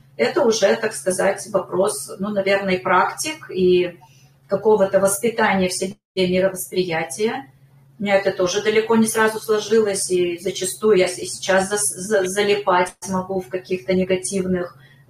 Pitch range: 175-200 Hz